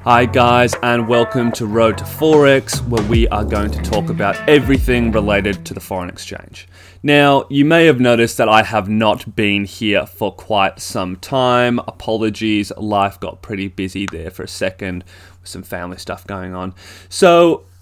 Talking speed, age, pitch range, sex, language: 175 wpm, 20-39, 95-130 Hz, male, English